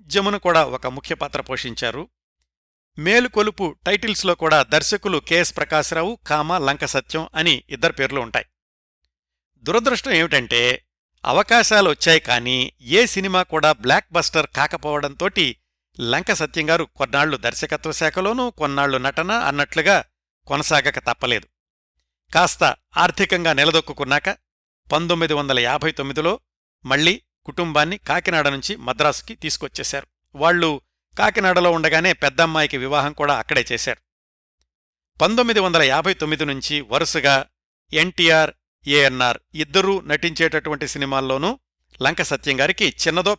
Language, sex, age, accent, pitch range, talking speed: Telugu, male, 60-79, native, 125-170 Hz, 100 wpm